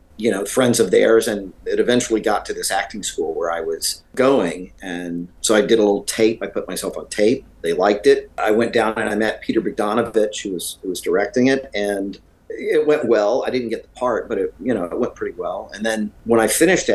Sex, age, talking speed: male, 50-69, 240 wpm